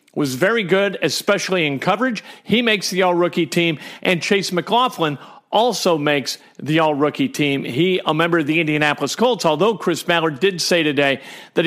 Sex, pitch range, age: male, 150-195 Hz, 50-69